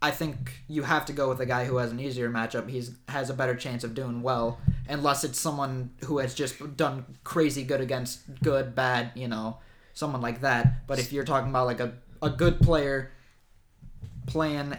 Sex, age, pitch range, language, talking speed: male, 20-39, 125-150 Hz, English, 205 wpm